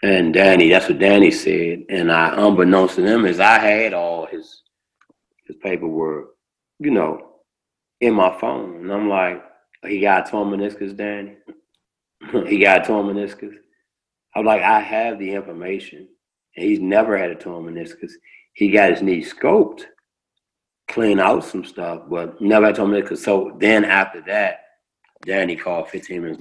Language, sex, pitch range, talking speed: English, male, 100-130 Hz, 165 wpm